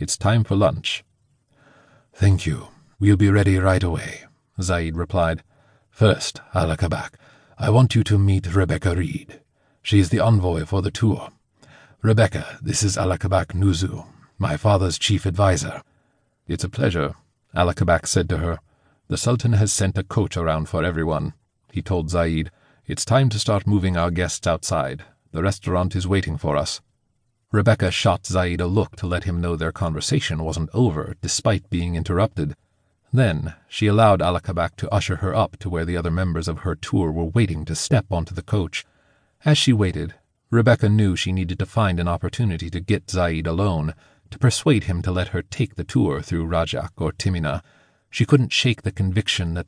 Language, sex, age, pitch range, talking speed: English, male, 40-59, 85-110 Hz, 175 wpm